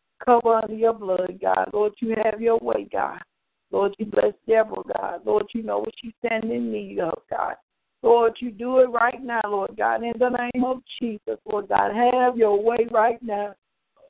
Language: English